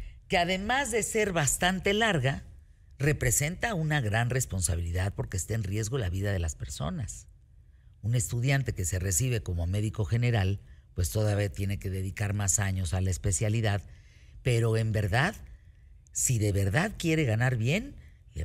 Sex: female